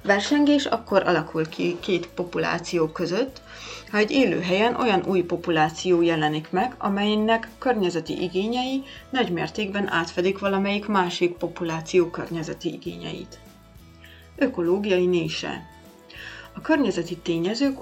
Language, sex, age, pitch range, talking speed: Hungarian, female, 30-49, 165-215 Hz, 100 wpm